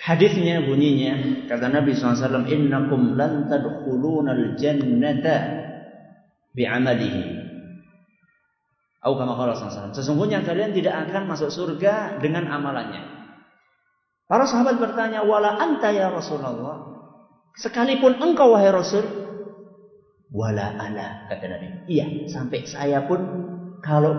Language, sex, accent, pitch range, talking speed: Indonesian, male, native, 140-215 Hz, 90 wpm